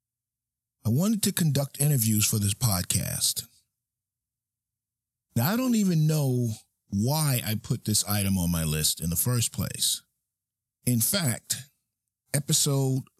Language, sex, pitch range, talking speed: English, male, 105-125 Hz, 125 wpm